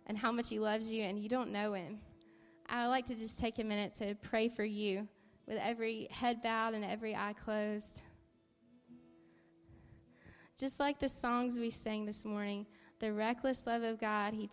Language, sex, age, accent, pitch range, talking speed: English, female, 10-29, American, 205-245 Hz, 185 wpm